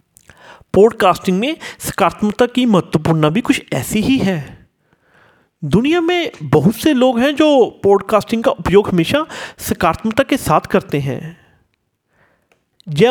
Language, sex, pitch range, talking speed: Hindi, male, 160-260 Hz, 125 wpm